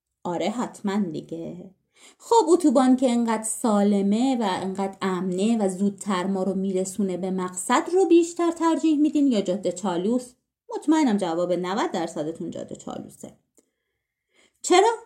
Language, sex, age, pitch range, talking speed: Persian, female, 30-49, 200-290 Hz, 130 wpm